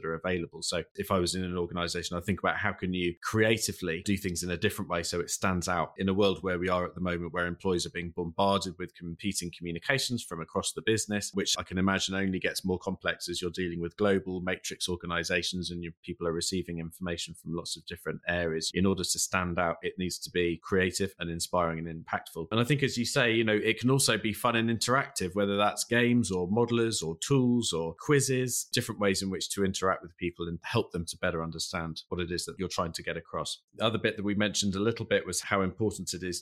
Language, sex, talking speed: English, male, 245 wpm